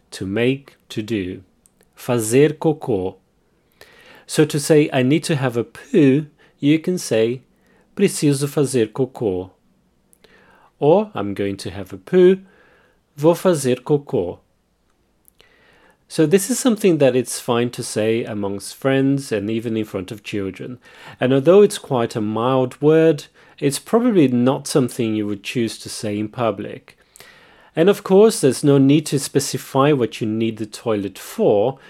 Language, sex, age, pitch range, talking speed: English, male, 30-49, 115-165 Hz, 150 wpm